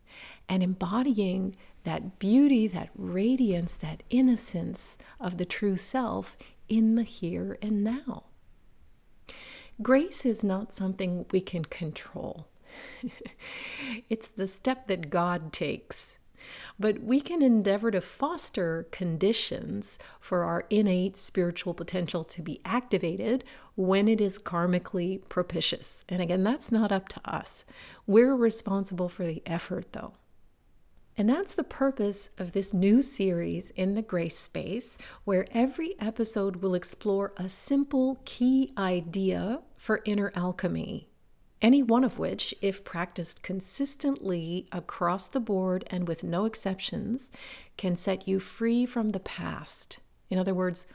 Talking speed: 130 wpm